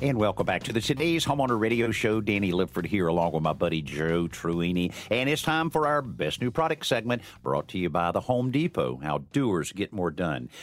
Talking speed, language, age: 220 wpm, English, 50-69